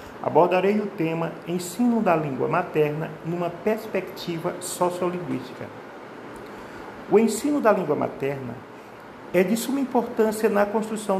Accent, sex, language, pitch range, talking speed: Brazilian, male, Portuguese, 180-215 Hz, 115 wpm